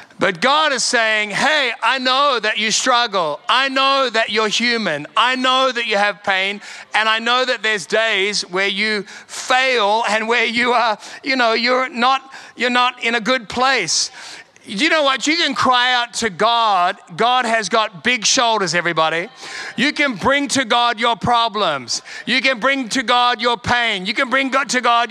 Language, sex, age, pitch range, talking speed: English, male, 30-49, 215-260 Hz, 190 wpm